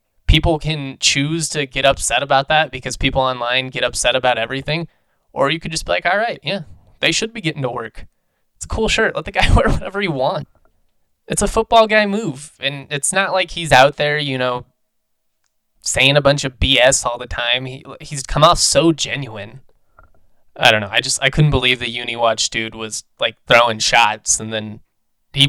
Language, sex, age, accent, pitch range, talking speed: English, male, 20-39, American, 120-155 Hz, 205 wpm